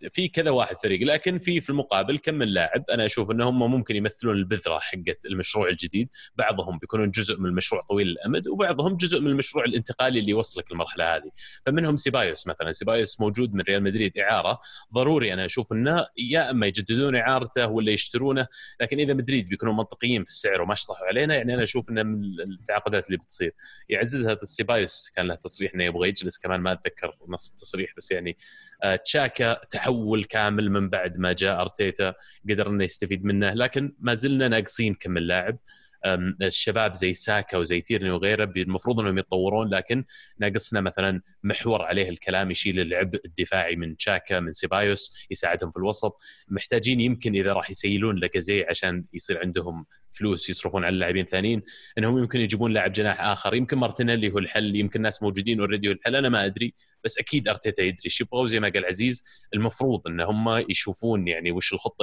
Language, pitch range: Arabic, 95-120 Hz